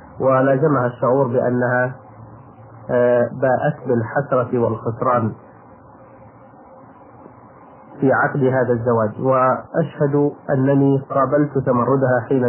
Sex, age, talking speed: male, 30-49, 75 wpm